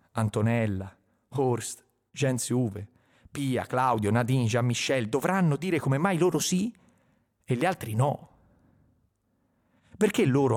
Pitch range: 105-140 Hz